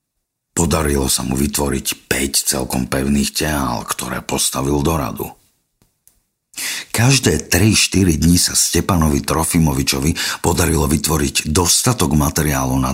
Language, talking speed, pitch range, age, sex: Slovak, 100 wpm, 70-85 Hz, 50-69, male